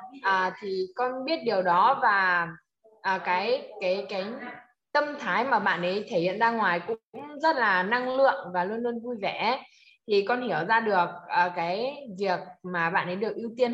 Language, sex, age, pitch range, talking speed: Vietnamese, female, 20-39, 175-230 Hz, 190 wpm